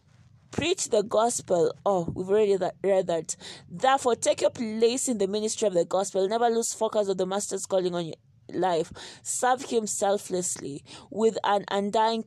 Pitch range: 180-225 Hz